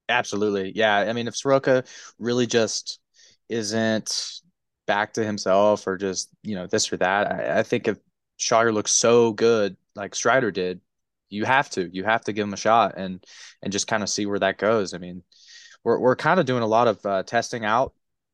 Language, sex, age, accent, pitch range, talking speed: English, male, 20-39, American, 95-115 Hz, 205 wpm